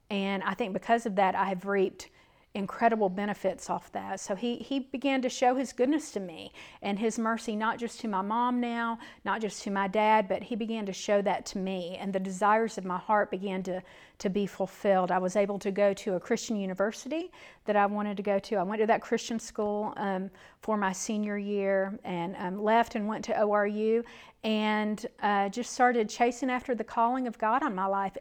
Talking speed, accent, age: 215 wpm, American, 40-59